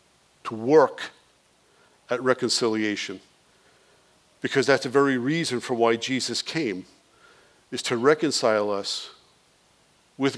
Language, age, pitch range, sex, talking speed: English, 50-69, 115-145 Hz, male, 100 wpm